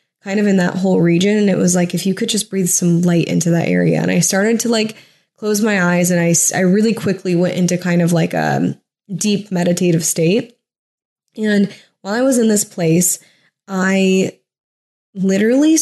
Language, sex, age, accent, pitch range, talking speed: English, female, 10-29, American, 175-210 Hz, 195 wpm